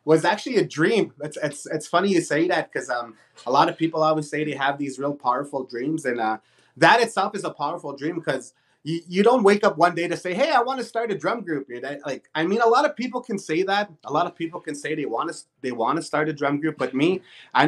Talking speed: 275 wpm